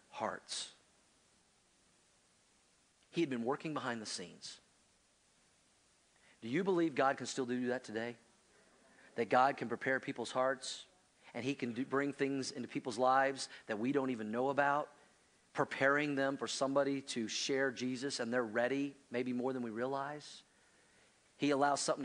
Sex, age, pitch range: male, 40-59, 125-150 Hz